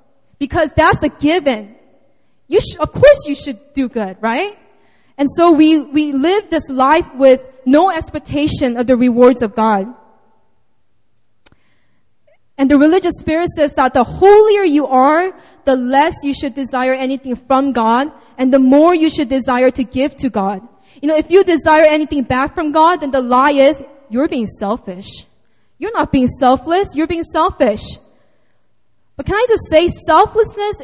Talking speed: 160 wpm